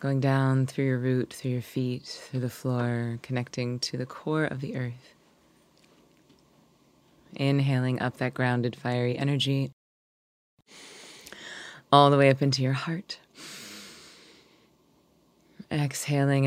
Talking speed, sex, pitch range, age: 115 wpm, female, 125-140 Hz, 20-39